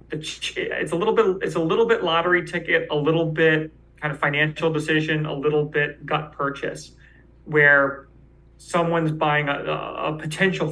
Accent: American